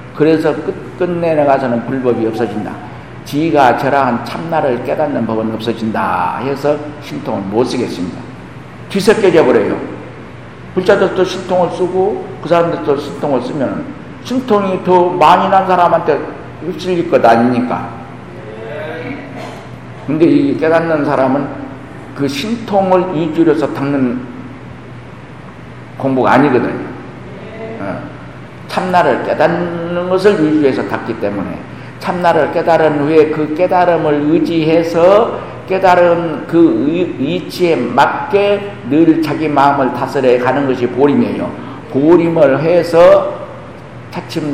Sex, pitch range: male, 135-175 Hz